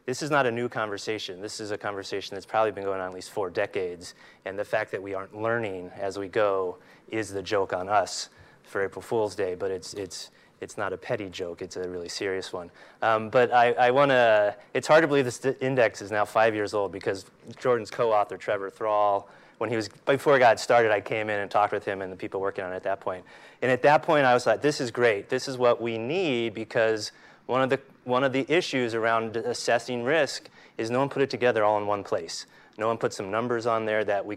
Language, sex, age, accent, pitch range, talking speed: English, male, 30-49, American, 105-130 Hz, 250 wpm